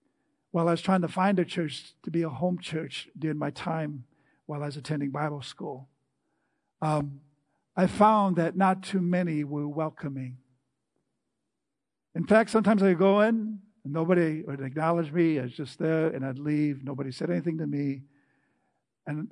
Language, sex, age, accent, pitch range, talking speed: English, male, 50-69, American, 145-180 Hz, 170 wpm